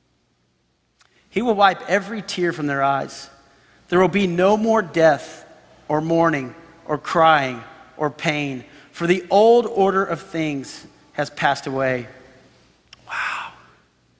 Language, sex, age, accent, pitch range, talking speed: English, male, 40-59, American, 160-235 Hz, 125 wpm